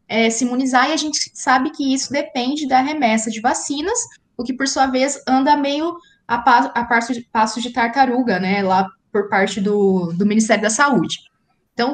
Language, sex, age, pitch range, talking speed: Portuguese, female, 20-39, 205-260 Hz, 180 wpm